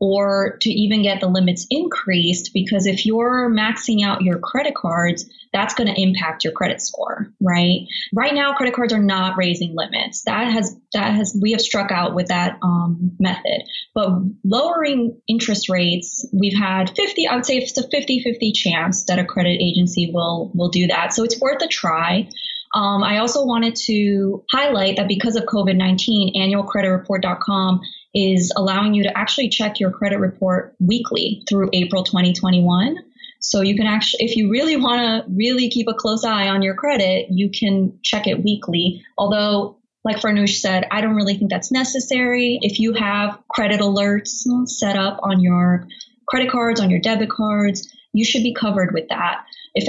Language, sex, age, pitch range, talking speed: English, female, 20-39, 190-230 Hz, 180 wpm